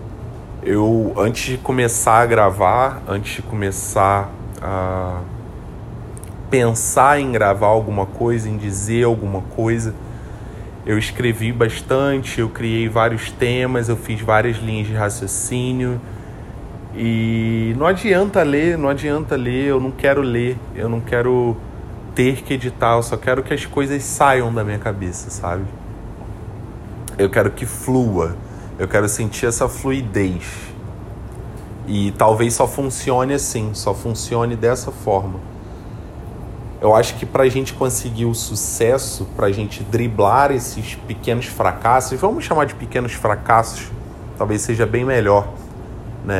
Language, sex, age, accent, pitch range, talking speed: Portuguese, male, 20-39, Brazilian, 100-120 Hz, 135 wpm